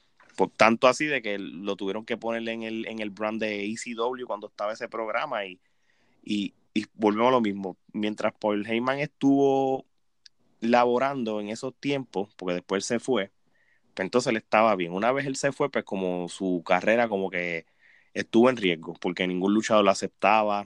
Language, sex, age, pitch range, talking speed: Spanish, male, 20-39, 100-125 Hz, 180 wpm